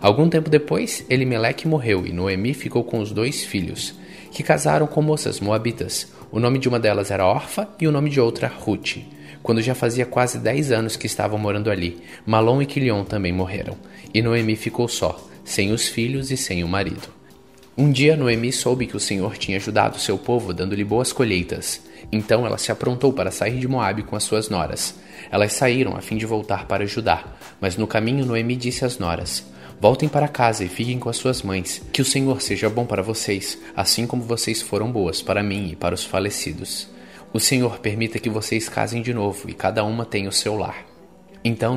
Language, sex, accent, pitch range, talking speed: Portuguese, male, Brazilian, 100-120 Hz, 200 wpm